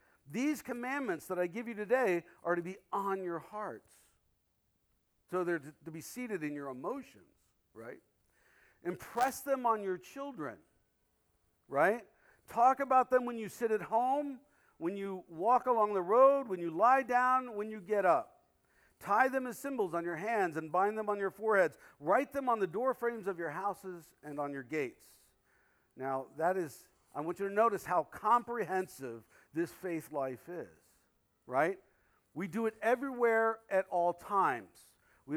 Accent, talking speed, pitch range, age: American, 170 wpm, 175-245 Hz, 50-69